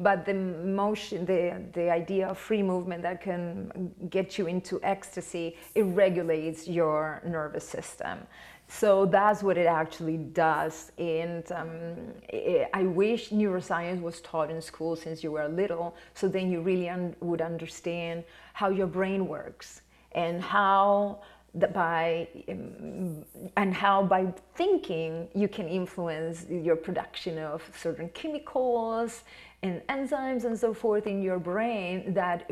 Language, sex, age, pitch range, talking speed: English, female, 30-49, 165-195 Hz, 135 wpm